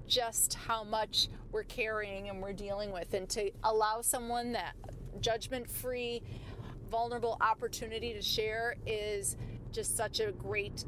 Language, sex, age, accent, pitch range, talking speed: English, female, 30-49, American, 210-245 Hz, 130 wpm